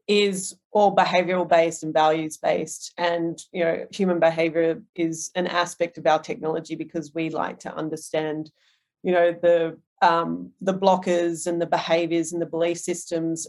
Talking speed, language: 160 wpm, English